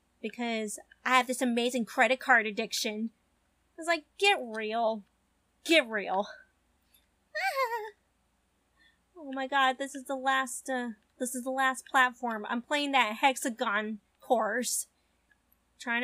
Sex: female